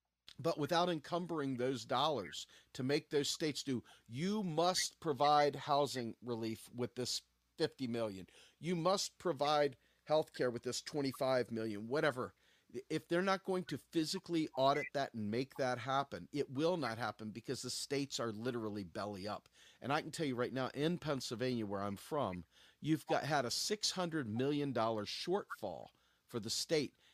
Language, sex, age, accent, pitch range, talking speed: English, male, 50-69, American, 120-150 Hz, 165 wpm